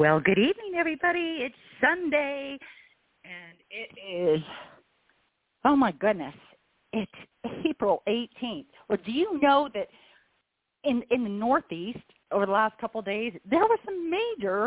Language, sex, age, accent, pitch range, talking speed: English, female, 40-59, American, 195-280 Hz, 140 wpm